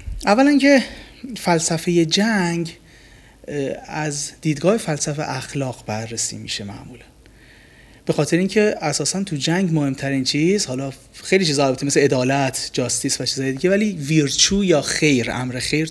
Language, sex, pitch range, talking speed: Persian, male, 135-185 Hz, 135 wpm